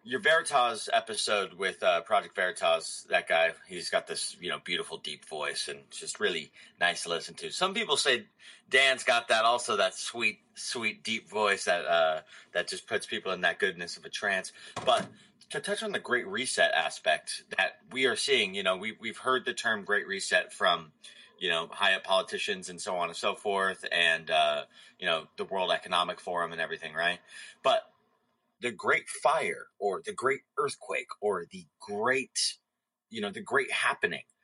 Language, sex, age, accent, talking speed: English, male, 30-49, American, 190 wpm